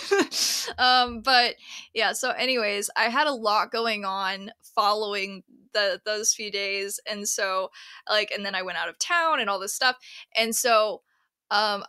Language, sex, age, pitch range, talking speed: English, female, 20-39, 205-250 Hz, 165 wpm